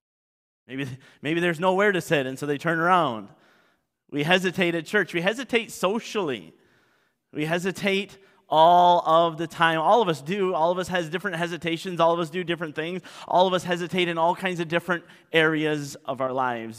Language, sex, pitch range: English, male, 155-185 Hz